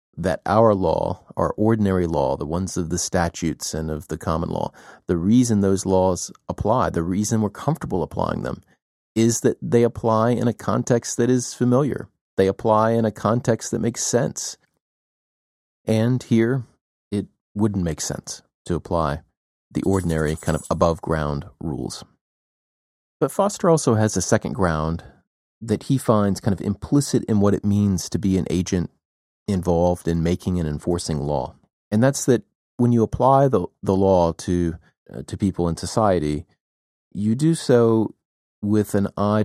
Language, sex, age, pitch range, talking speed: English, male, 30-49, 85-110 Hz, 165 wpm